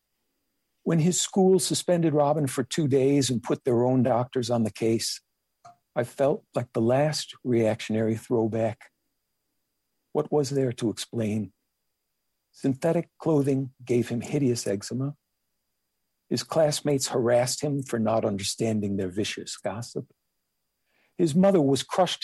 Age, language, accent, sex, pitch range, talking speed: 60-79, English, American, male, 110-135 Hz, 130 wpm